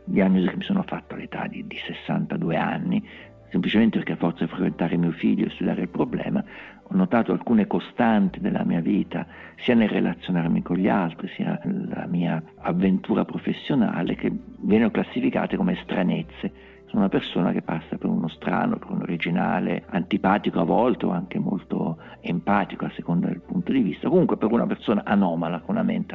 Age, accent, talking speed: 50-69, native, 175 wpm